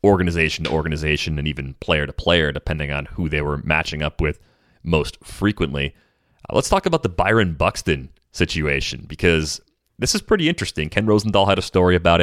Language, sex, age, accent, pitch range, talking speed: English, male, 30-49, American, 80-100 Hz, 180 wpm